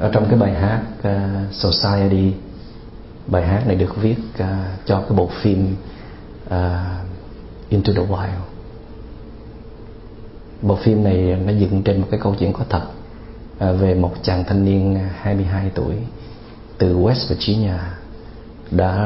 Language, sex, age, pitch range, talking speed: Vietnamese, male, 30-49, 95-115 Hz, 130 wpm